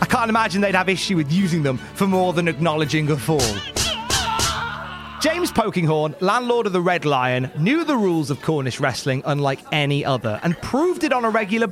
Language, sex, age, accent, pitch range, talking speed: English, male, 30-49, British, 155-235 Hz, 190 wpm